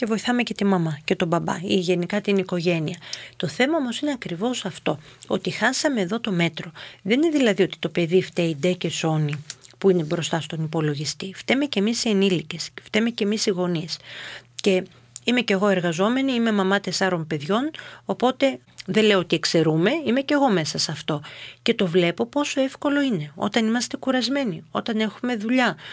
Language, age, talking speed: Greek, 40-59, 185 wpm